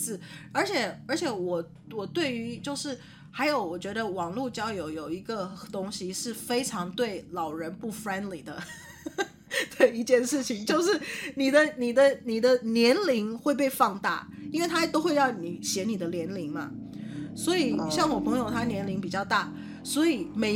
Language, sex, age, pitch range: Chinese, female, 20-39, 185-265 Hz